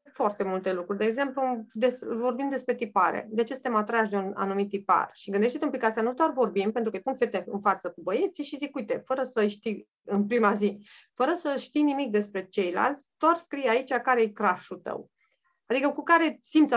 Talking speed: 205 wpm